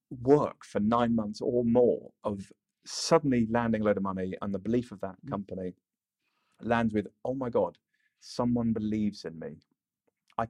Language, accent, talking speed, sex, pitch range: English, British, 165 wpm, male, 100-120 Hz